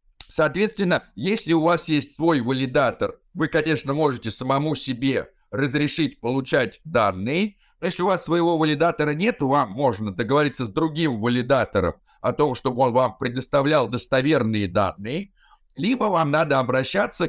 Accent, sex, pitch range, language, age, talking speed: native, male, 135-180 Hz, Russian, 60-79, 135 wpm